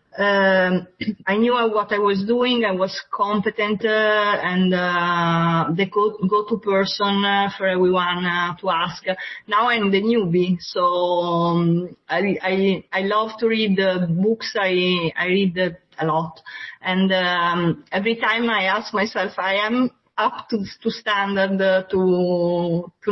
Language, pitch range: English, 175-210 Hz